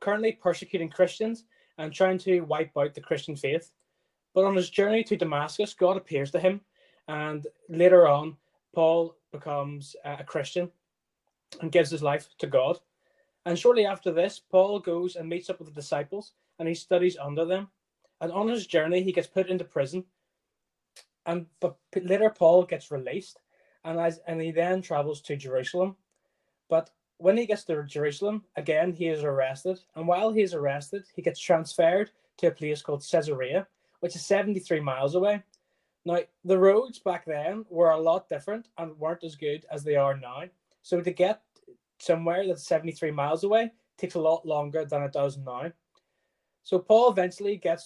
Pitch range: 160-190 Hz